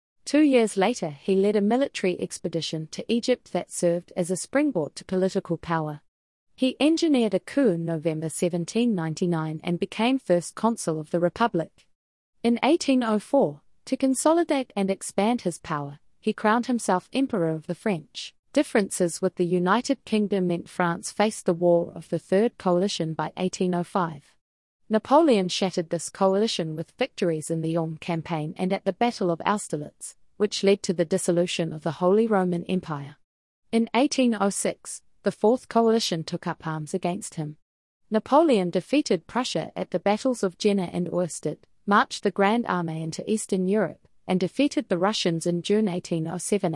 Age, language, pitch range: 30-49, English, 170-220 Hz